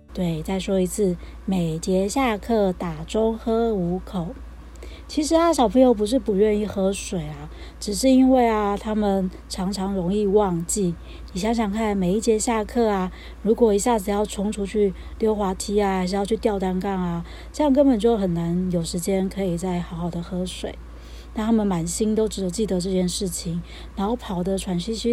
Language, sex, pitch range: Chinese, female, 175-220 Hz